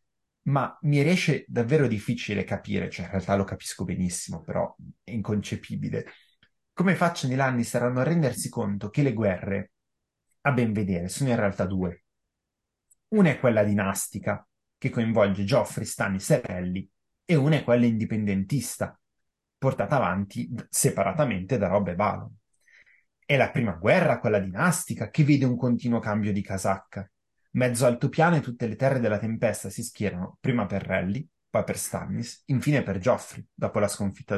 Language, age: Italian, 30-49